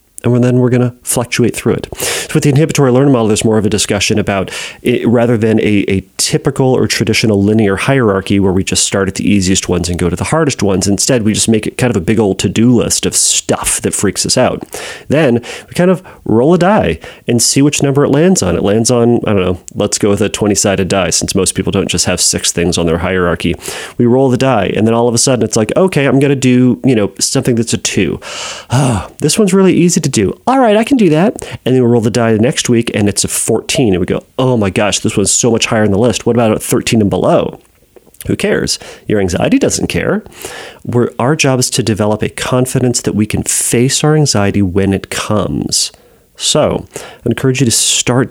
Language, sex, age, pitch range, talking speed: English, male, 30-49, 100-135 Hz, 245 wpm